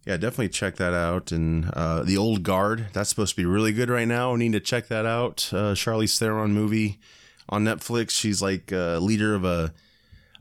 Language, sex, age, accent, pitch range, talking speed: English, male, 30-49, American, 90-115 Hz, 215 wpm